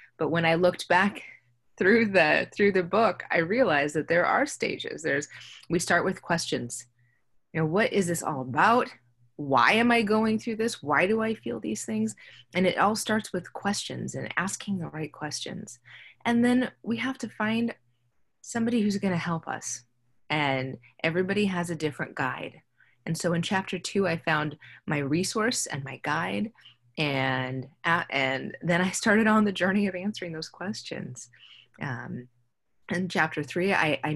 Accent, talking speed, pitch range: American, 175 wpm, 135-190 Hz